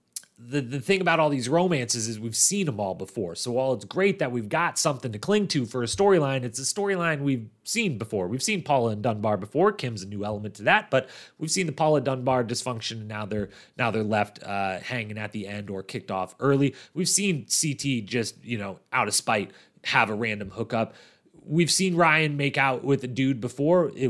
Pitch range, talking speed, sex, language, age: 110-170 Hz, 225 wpm, male, English, 30-49